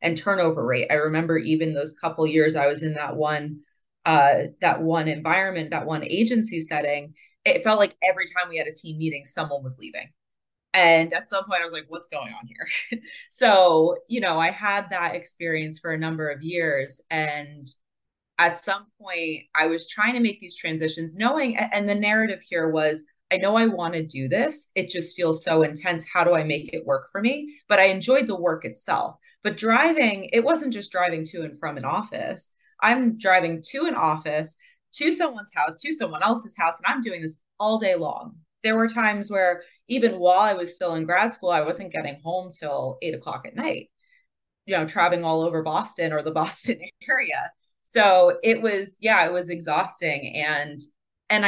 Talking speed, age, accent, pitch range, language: 200 wpm, 30-49, American, 160-220 Hz, English